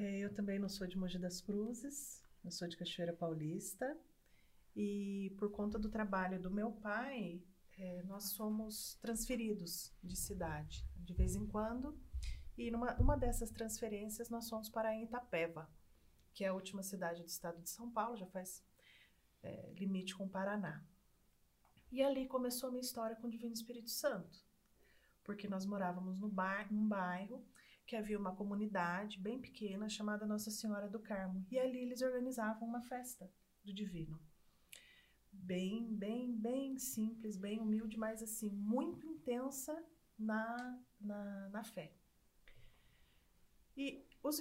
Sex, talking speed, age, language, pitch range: female, 150 wpm, 30-49, Portuguese, 185-230 Hz